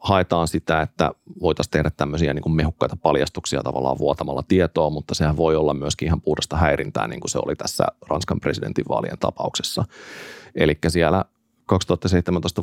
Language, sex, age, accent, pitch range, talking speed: Finnish, male, 30-49, native, 75-90 Hz, 145 wpm